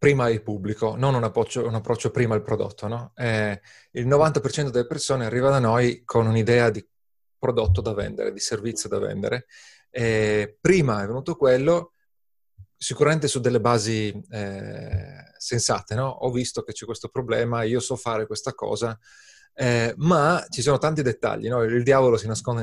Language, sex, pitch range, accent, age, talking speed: Italian, male, 110-145 Hz, native, 30-49, 160 wpm